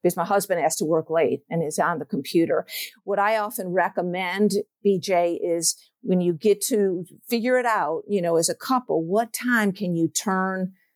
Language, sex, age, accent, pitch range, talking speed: English, female, 50-69, American, 180-210 Hz, 190 wpm